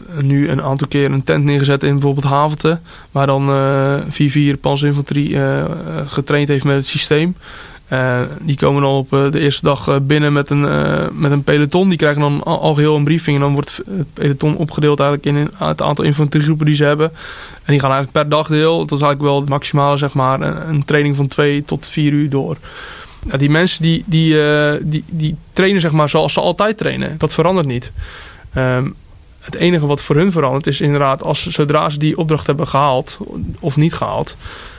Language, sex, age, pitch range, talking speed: Dutch, male, 20-39, 140-155 Hz, 205 wpm